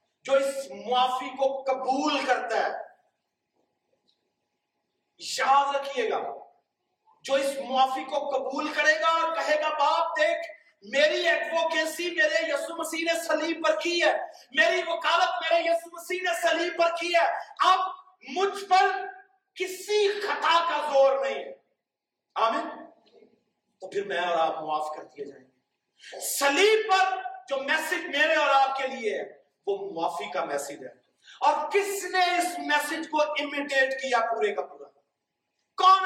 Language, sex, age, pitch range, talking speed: Urdu, male, 40-59, 270-365 Hz, 145 wpm